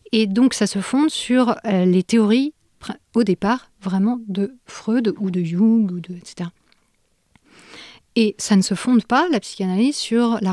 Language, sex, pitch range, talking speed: French, female, 180-220 Hz, 165 wpm